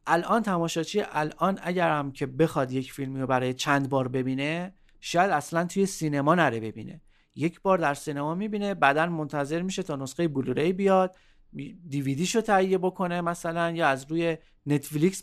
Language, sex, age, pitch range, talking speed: Persian, male, 40-59, 135-185 Hz, 160 wpm